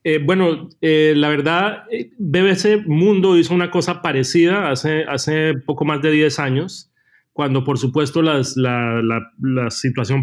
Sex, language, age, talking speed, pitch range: male, Spanish, 30-49, 155 wpm, 135-165 Hz